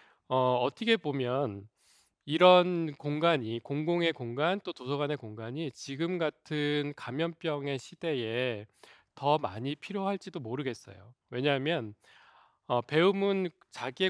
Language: English